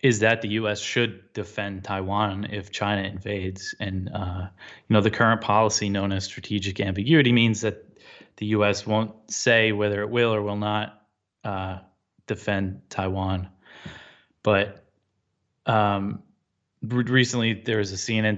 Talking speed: 140 wpm